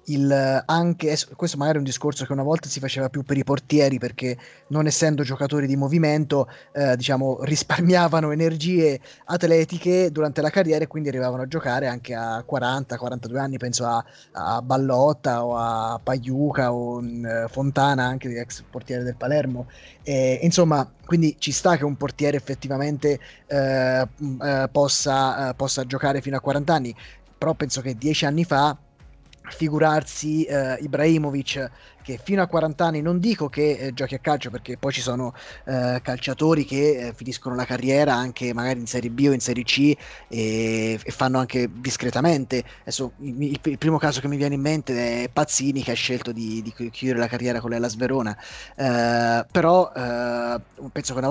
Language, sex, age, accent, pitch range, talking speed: Italian, male, 20-39, native, 125-150 Hz, 175 wpm